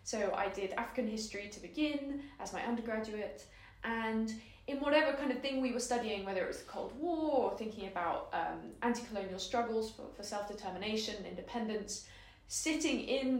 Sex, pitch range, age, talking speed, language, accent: female, 200-255 Hz, 20-39, 165 wpm, English, British